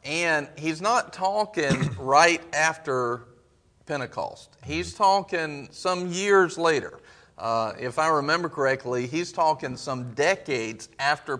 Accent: American